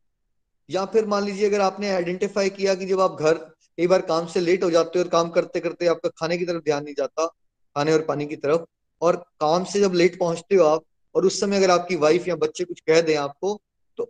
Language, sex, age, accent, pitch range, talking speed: Hindi, male, 20-39, native, 150-190 Hz, 245 wpm